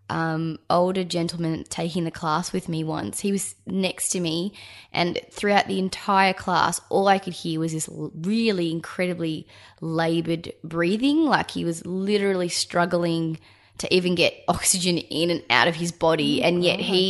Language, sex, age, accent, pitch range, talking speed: English, female, 20-39, Australian, 160-180 Hz, 165 wpm